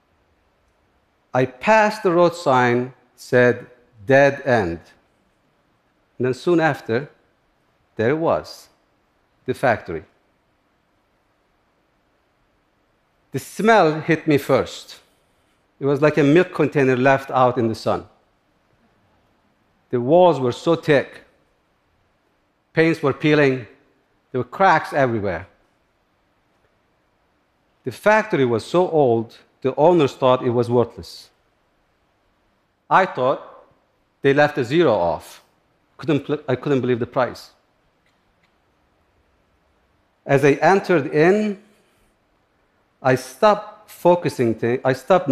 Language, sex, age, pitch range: Korean, male, 50-69, 105-155 Hz